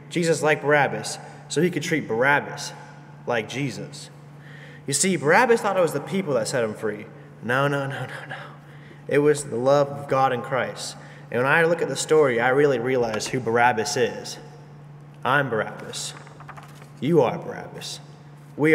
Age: 20-39